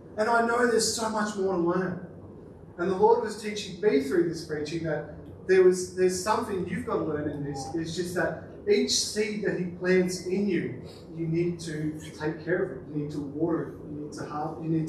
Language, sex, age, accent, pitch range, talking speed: English, male, 30-49, Australian, 155-195 Hz, 230 wpm